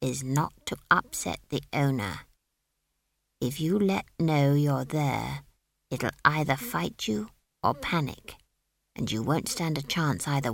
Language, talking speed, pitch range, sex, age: English, 140 wpm, 135-185 Hz, female, 60-79